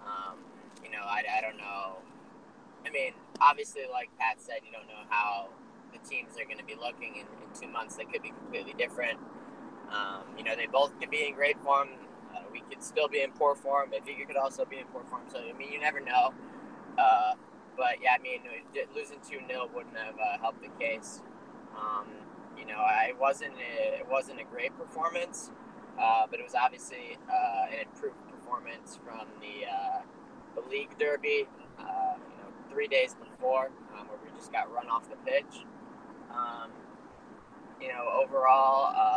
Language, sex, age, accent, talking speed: English, male, 10-29, American, 185 wpm